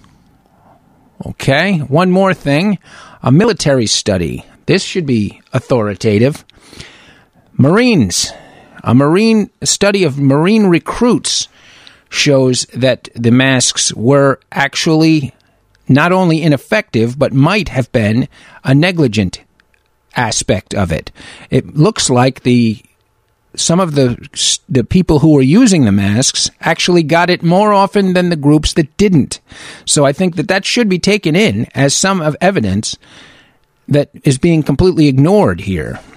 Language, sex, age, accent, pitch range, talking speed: English, male, 50-69, American, 125-175 Hz, 130 wpm